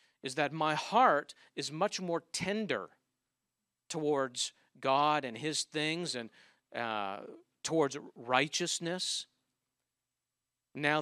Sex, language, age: male, English, 50-69